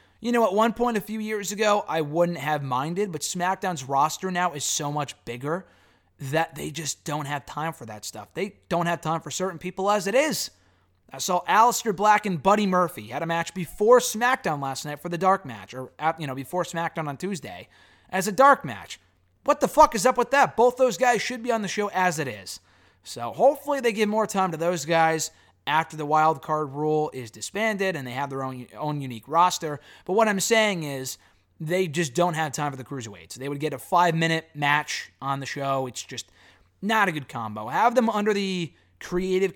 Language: English